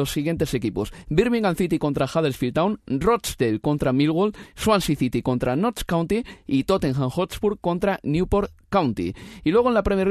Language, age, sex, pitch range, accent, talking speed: Spanish, 30-49, male, 125-175 Hz, Spanish, 160 wpm